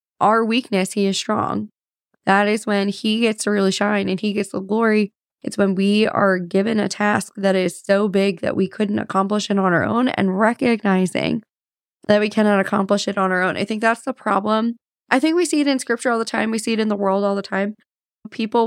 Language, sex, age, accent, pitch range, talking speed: English, female, 20-39, American, 200-230 Hz, 230 wpm